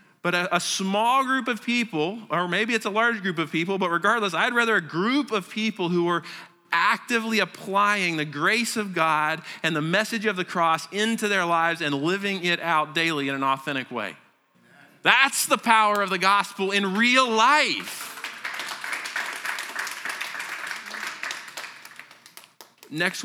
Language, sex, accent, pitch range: English, male, American, 155-220 Hz